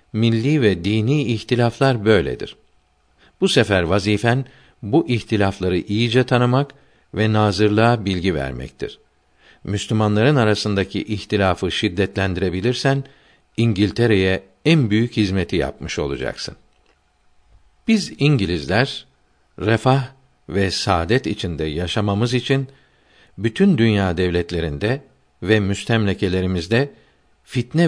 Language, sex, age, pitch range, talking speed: Turkish, male, 60-79, 95-125 Hz, 85 wpm